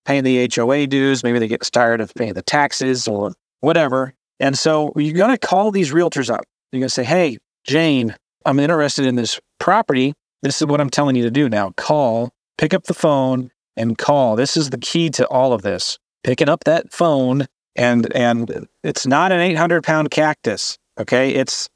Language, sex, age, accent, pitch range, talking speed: English, male, 30-49, American, 120-150 Hz, 200 wpm